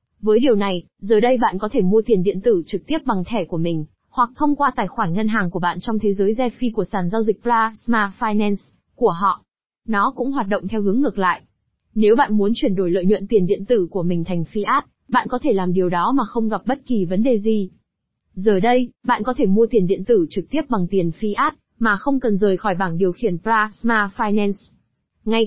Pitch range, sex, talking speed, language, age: 195-245 Hz, female, 235 wpm, Vietnamese, 20-39